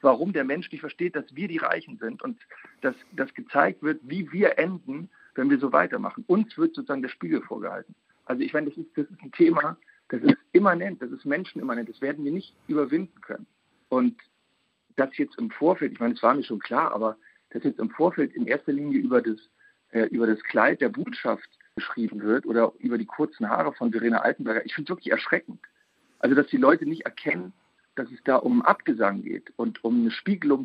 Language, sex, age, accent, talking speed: German, male, 50-69, German, 215 wpm